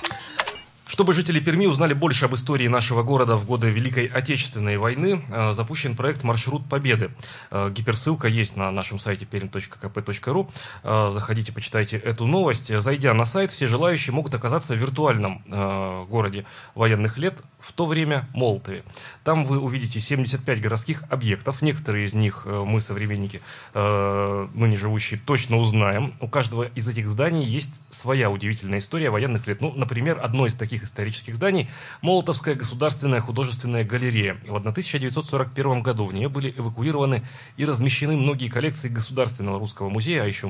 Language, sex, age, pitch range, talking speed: Russian, male, 30-49, 105-135 Hz, 145 wpm